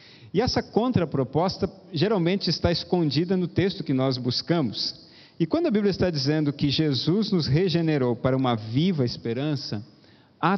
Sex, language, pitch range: male, Portuguese, 125-175 Hz